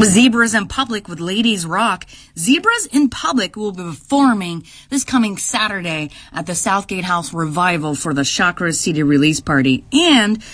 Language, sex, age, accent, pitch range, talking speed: English, female, 30-49, American, 155-255 Hz, 155 wpm